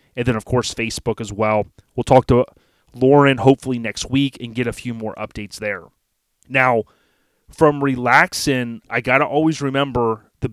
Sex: male